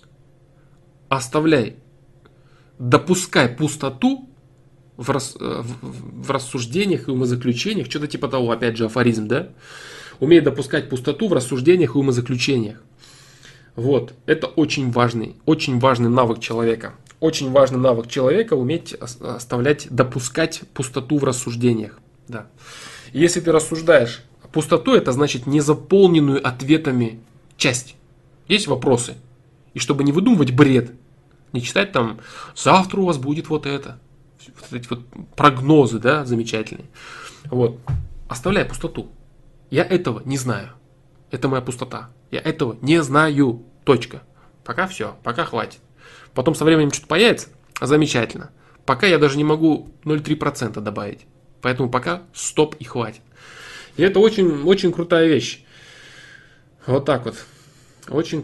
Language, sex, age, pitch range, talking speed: Russian, male, 20-39, 125-150 Hz, 125 wpm